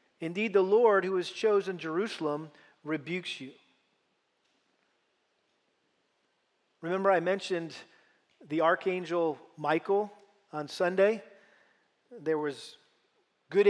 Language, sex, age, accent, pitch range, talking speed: English, male, 40-59, American, 170-205 Hz, 90 wpm